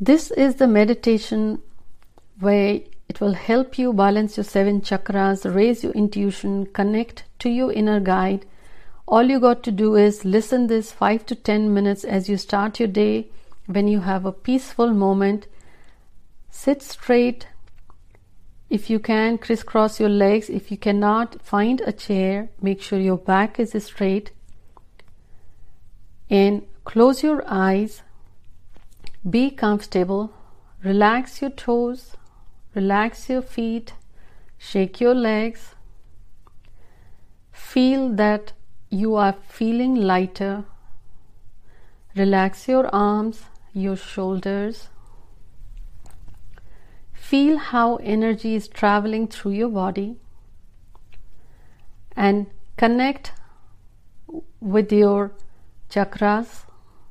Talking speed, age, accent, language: 110 wpm, 60-79, native, Hindi